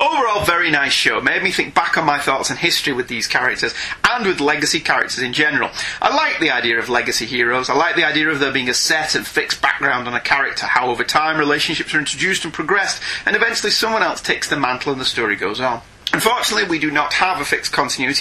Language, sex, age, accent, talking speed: English, male, 30-49, British, 235 wpm